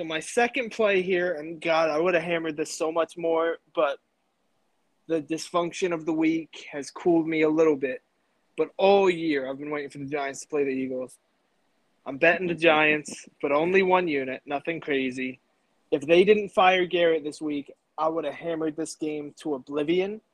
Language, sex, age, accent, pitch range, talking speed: English, male, 20-39, American, 155-190 Hz, 190 wpm